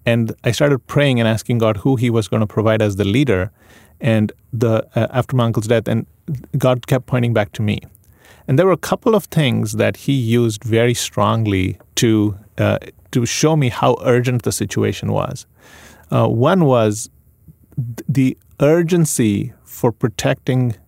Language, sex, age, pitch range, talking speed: English, male, 30-49, 105-130 Hz, 170 wpm